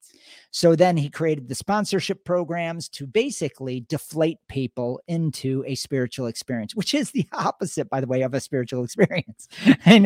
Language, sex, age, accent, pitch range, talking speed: English, male, 50-69, American, 130-180 Hz, 160 wpm